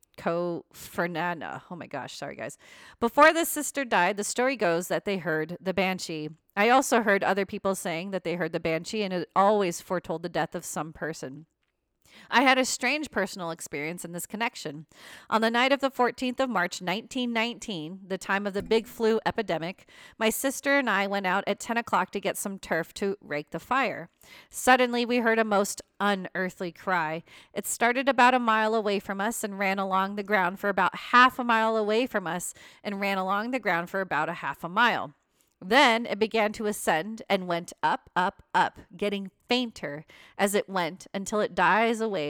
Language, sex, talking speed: English, female, 195 wpm